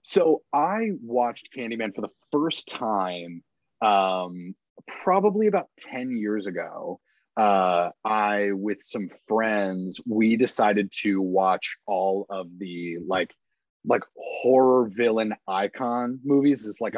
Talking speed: 120 wpm